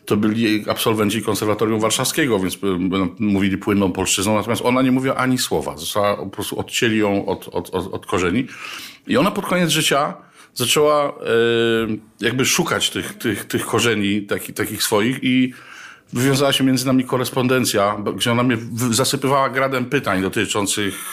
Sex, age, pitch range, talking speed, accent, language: male, 50-69, 105-130 Hz, 150 wpm, native, Polish